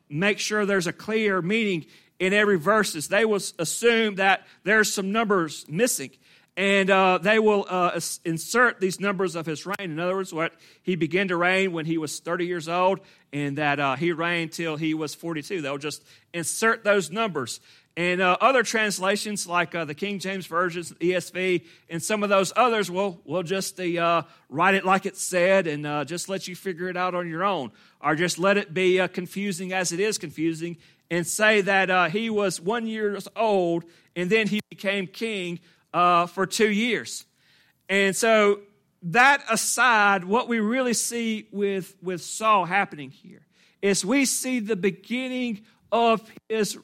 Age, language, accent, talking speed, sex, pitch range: 40-59, English, American, 180 wpm, male, 175-220 Hz